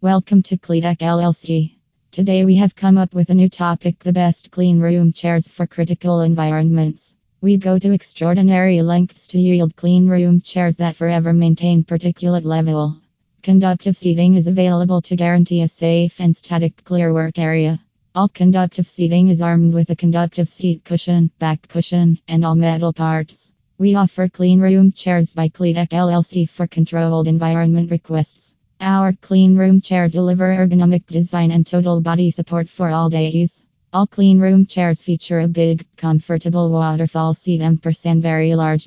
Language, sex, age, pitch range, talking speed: English, female, 20-39, 165-180 Hz, 160 wpm